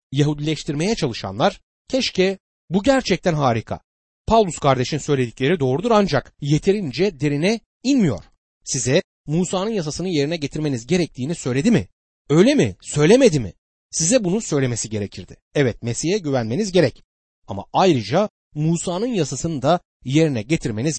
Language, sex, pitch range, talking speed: Turkish, male, 115-180 Hz, 115 wpm